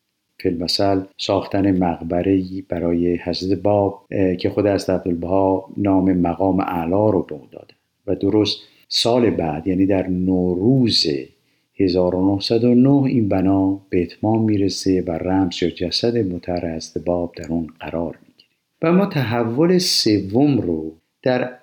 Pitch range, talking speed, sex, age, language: 95-120 Hz, 125 wpm, male, 50-69, Persian